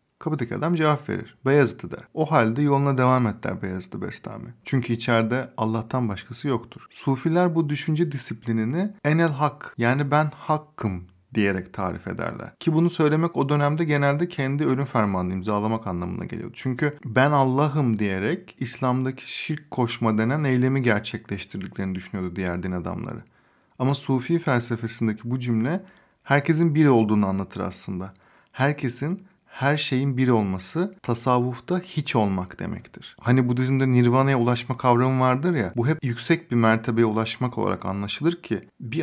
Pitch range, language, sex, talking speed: 115-145 Hz, Turkish, male, 140 wpm